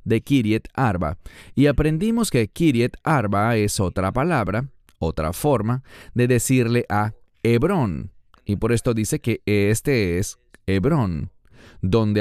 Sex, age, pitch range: male, 40-59, 105-150 Hz